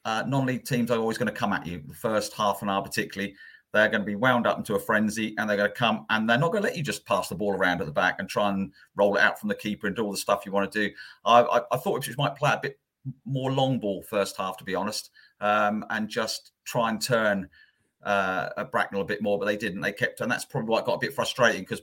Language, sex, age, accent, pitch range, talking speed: English, male, 40-59, British, 100-130 Hz, 295 wpm